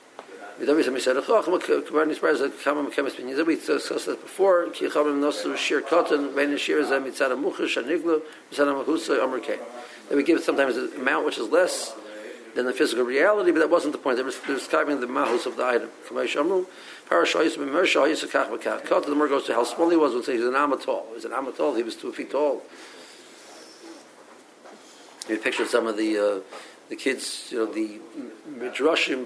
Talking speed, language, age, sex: 145 wpm, English, 50-69, male